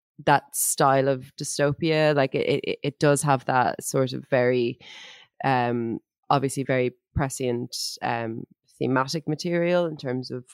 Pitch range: 125-155 Hz